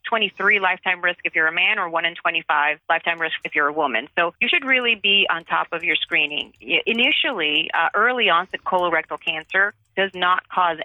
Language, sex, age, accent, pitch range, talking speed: English, female, 30-49, American, 165-195 Hz, 200 wpm